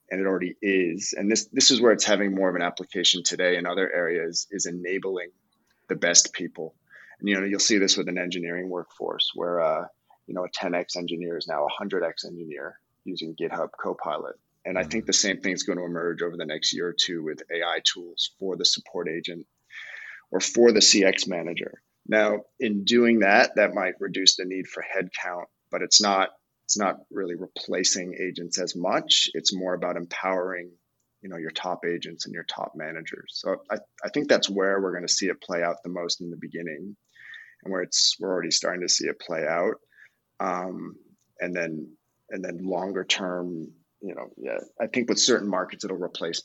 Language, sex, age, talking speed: English, male, 30-49, 200 wpm